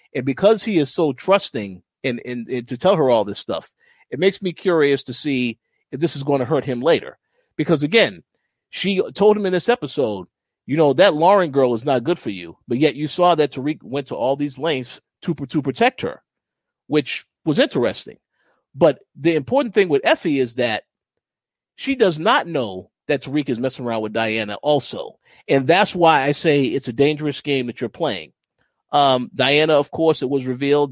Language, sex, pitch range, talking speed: English, male, 125-165 Hz, 195 wpm